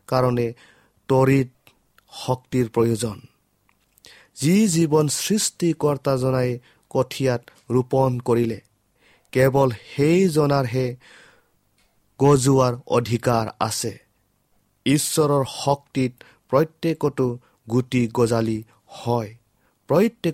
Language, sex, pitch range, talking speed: English, male, 115-140 Hz, 85 wpm